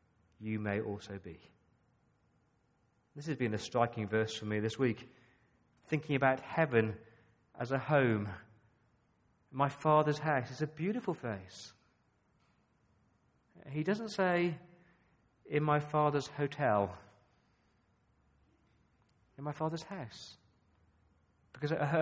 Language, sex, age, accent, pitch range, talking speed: English, male, 40-59, British, 115-155 Hz, 105 wpm